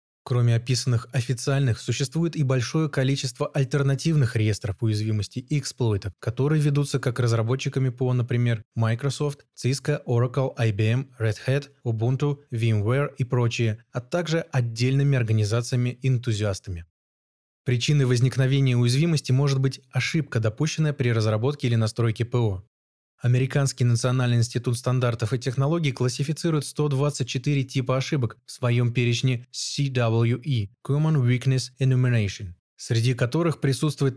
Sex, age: male, 20-39